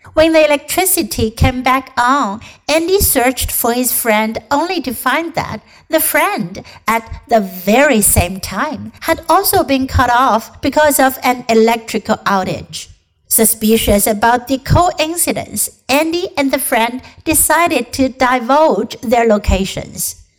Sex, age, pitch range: female, 60-79, 215-290 Hz